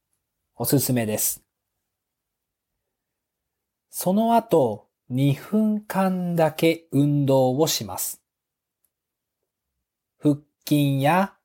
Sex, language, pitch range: male, Japanese, 120-165 Hz